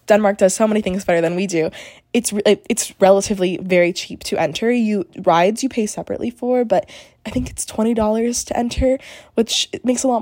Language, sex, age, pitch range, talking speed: English, female, 20-39, 170-220 Hz, 200 wpm